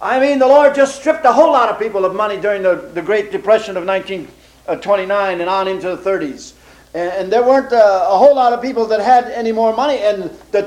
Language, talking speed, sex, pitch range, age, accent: English, 240 wpm, male, 180-250 Hz, 60-79, American